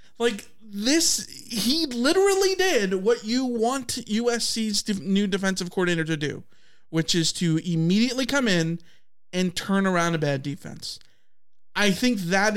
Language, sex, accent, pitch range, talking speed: English, male, American, 155-215 Hz, 140 wpm